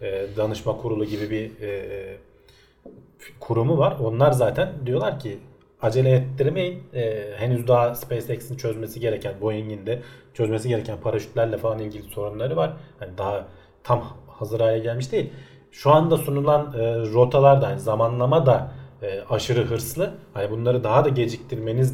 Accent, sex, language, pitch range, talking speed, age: native, male, Turkish, 110-135 Hz, 140 wpm, 40-59